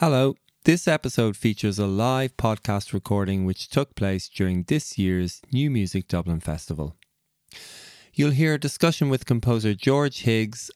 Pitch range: 100-140 Hz